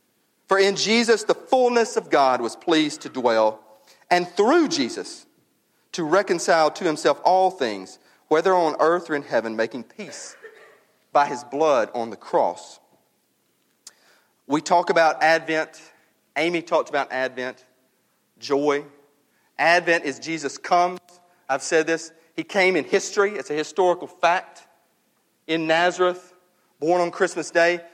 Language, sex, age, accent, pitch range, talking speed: English, male, 40-59, American, 150-200 Hz, 135 wpm